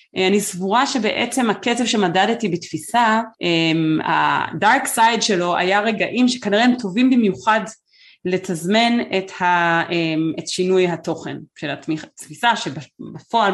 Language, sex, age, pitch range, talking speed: Hebrew, female, 30-49, 170-225 Hz, 100 wpm